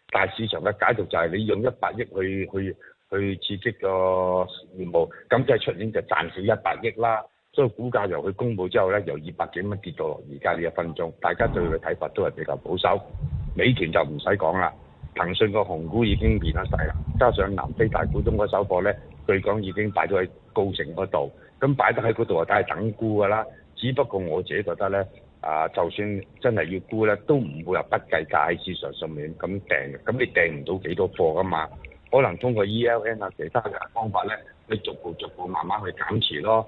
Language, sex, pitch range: Chinese, male, 85-110 Hz